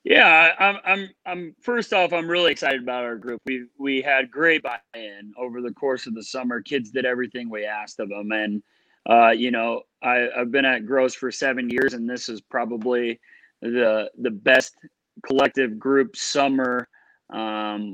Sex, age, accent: male, 30-49, American